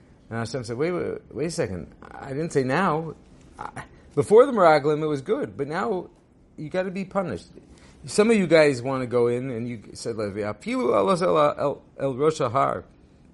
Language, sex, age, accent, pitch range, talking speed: English, male, 40-59, American, 100-150 Hz, 170 wpm